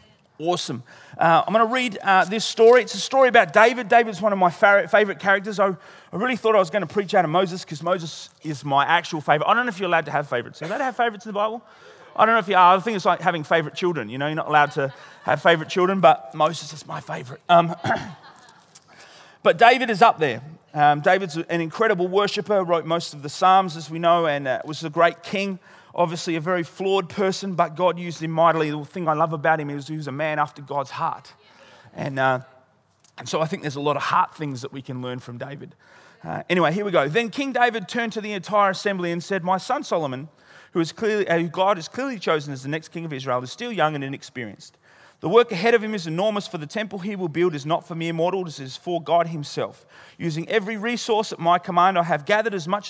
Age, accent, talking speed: 30-49, Australian, 250 wpm